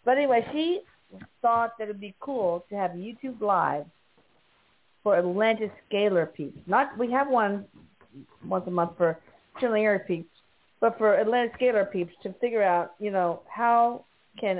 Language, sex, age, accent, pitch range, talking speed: English, female, 40-59, American, 170-230 Hz, 160 wpm